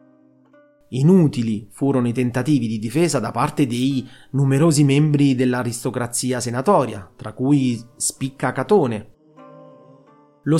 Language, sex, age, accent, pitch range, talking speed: Italian, male, 30-49, native, 125-165 Hz, 100 wpm